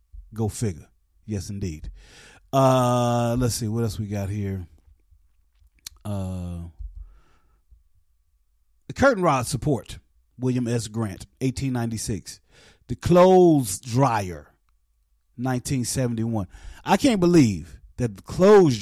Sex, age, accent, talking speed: male, 30-49, American, 100 wpm